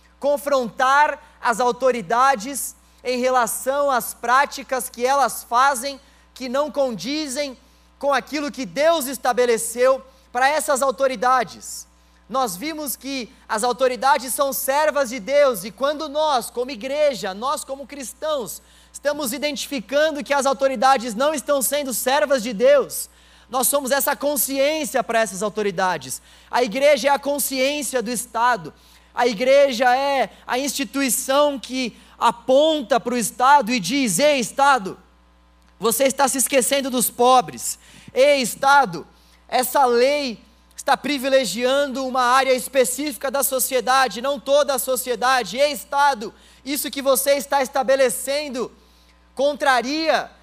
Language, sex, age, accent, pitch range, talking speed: Portuguese, male, 20-39, Brazilian, 245-280 Hz, 125 wpm